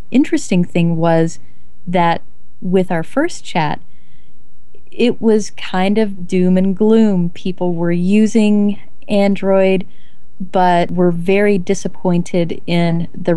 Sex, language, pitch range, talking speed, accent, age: female, English, 170-190 Hz, 110 wpm, American, 30-49